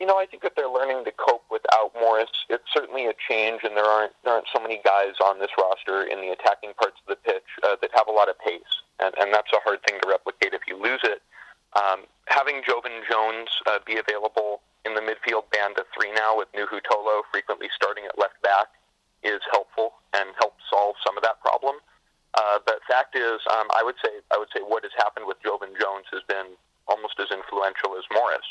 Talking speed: 225 wpm